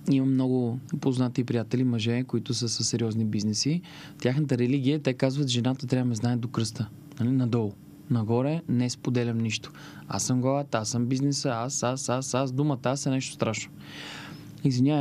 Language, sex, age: Bulgarian, male, 20-39